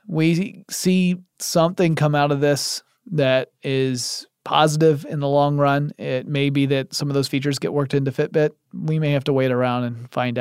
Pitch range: 140-185 Hz